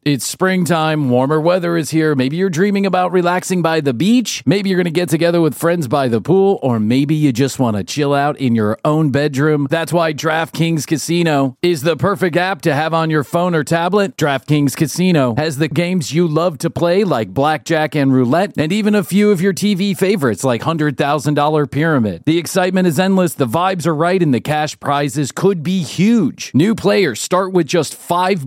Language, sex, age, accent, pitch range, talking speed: English, male, 40-59, American, 135-175 Hz, 205 wpm